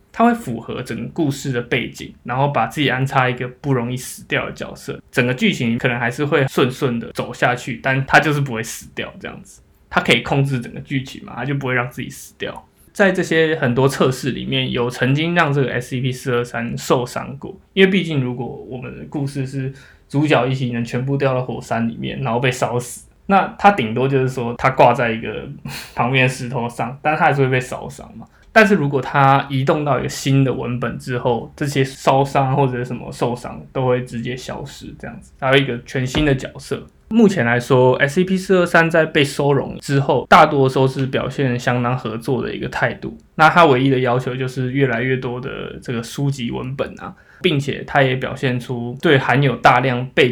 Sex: male